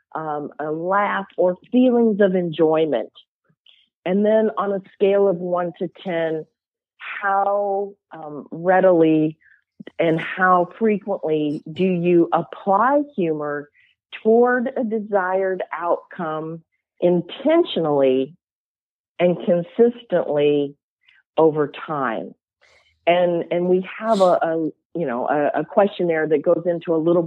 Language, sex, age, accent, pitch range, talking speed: English, female, 40-59, American, 165-200 Hz, 110 wpm